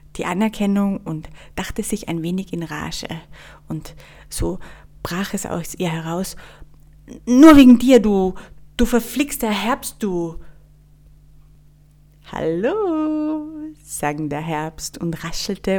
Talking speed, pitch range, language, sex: 120 wpm, 155-200 Hz, English, female